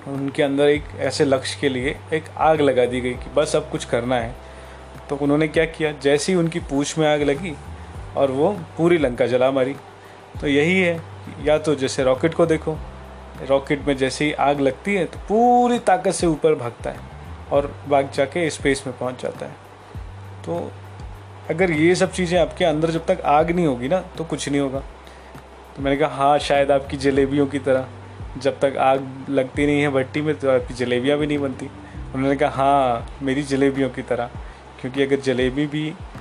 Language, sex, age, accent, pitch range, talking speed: Hindi, male, 20-39, native, 105-150 Hz, 195 wpm